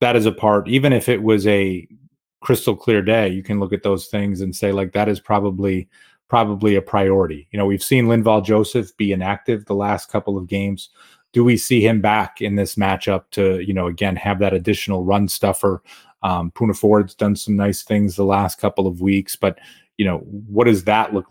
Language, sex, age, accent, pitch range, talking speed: English, male, 30-49, American, 100-110 Hz, 215 wpm